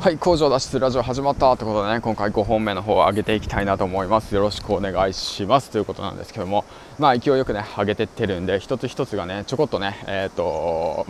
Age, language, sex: 20-39, Japanese, male